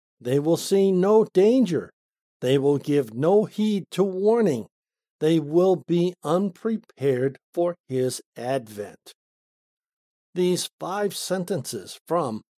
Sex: male